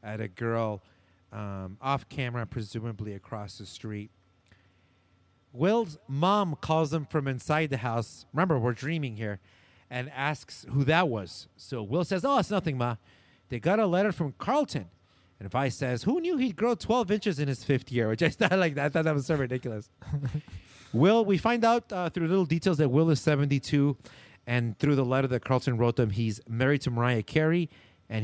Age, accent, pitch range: 30-49, American, 105-155 Hz